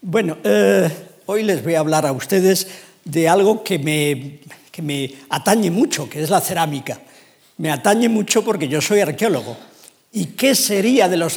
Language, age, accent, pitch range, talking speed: Spanish, 50-69, Spanish, 160-210 Hz, 165 wpm